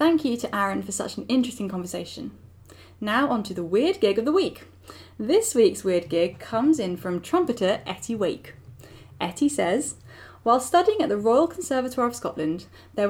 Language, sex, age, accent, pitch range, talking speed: English, female, 10-29, British, 190-285 Hz, 180 wpm